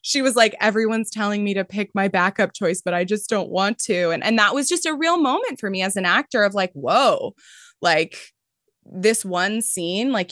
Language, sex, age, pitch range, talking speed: English, female, 20-39, 165-225 Hz, 220 wpm